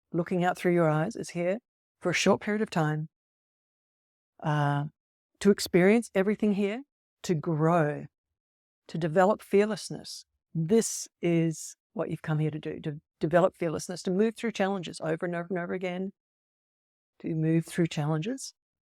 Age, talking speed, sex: 60-79, 150 wpm, female